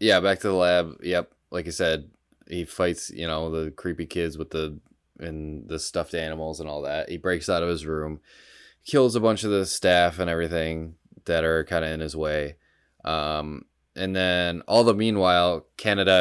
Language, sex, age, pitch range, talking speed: English, male, 20-39, 75-85 Hz, 195 wpm